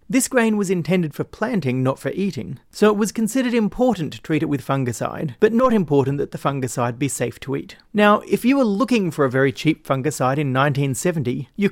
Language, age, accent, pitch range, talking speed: English, 30-49, Australian, 135-195 Hz, 215 wpm